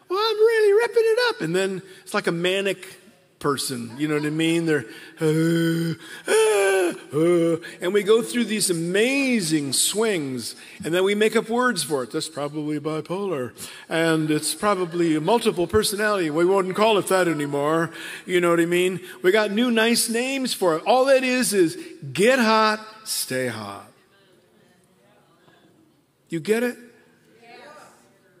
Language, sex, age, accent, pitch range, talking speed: English, male, 50-69, American, 150-205 Hz, 160 wpm